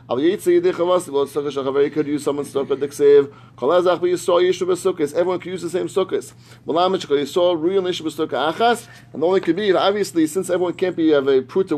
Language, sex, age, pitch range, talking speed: English, male, 30-49, 140-200 Hz, 115 wpm